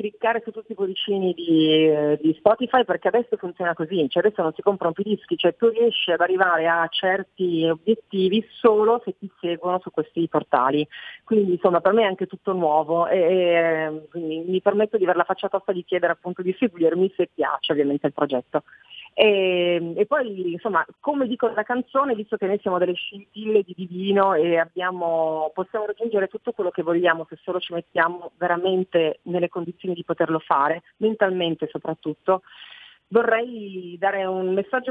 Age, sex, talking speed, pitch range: 30-49, female, 175 wpm, 170-205 Hz